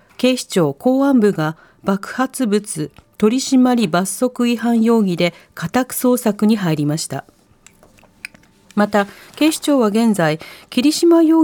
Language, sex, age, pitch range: Japanese, female, 40-59, 185-255 Hz